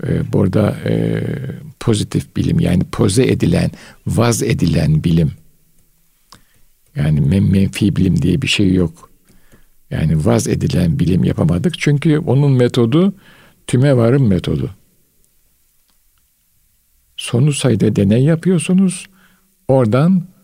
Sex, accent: male, native